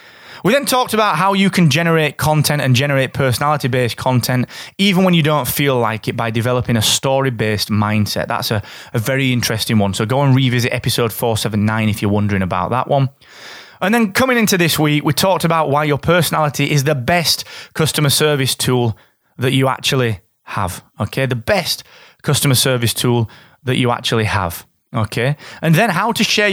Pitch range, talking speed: 120-165 Hz, 185 wpm